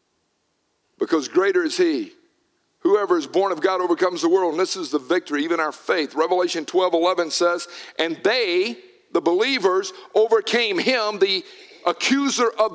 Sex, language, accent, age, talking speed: male, English, American, 50-69, 155 wpm